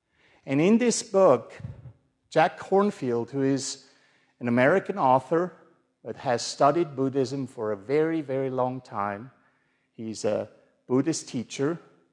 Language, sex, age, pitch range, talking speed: English, male, 50-69, 120-165 Hz, 125 wpm